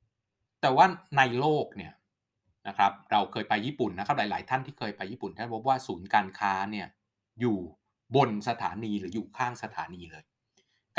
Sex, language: male, Thai